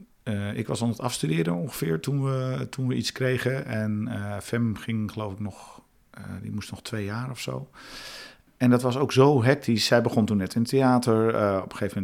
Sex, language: male, Dutch